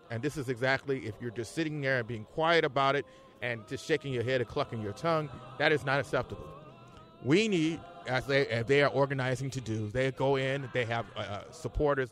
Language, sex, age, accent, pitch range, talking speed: English, male, 30-49, American, 120-155 Hz, 215 wpm